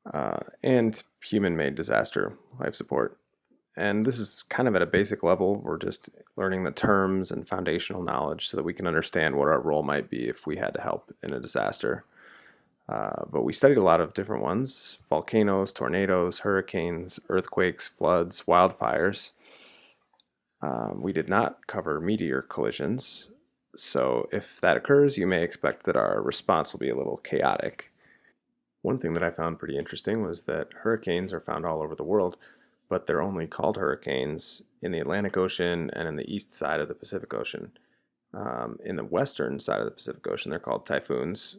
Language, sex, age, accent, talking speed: English, male, 30-49, American, 180 wpm